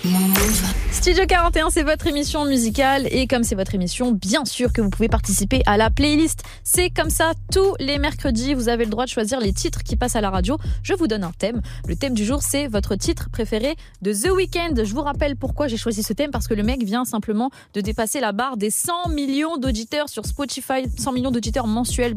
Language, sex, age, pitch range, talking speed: French, female, 20-39, 215-290 Hz, 225 wpm